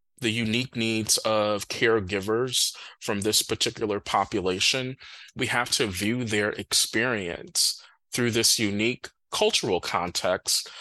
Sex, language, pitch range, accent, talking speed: male, English, 105-135 Hz, American, 110 wpm